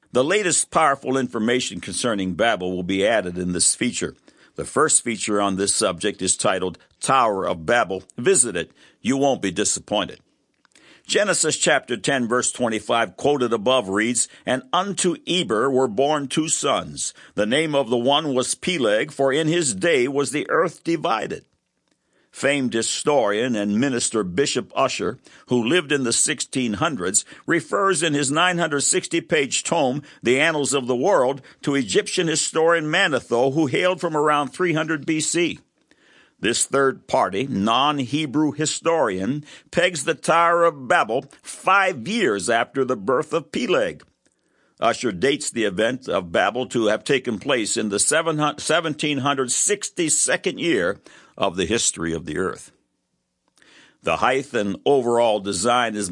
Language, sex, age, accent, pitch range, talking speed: English, male, 60-79, American, 115-160 Hz, 140 wpm